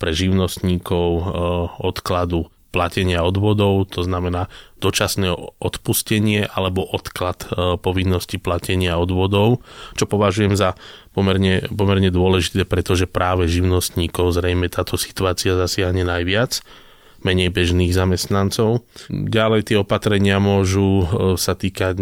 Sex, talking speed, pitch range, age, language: male, 100 wpm, 90-100 Hz, 20-39, Slovak